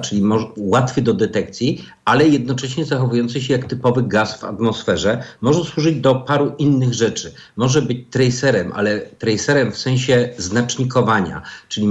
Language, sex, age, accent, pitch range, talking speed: Polish, male, 50-69, native, 110-130 Hz, 140 wpm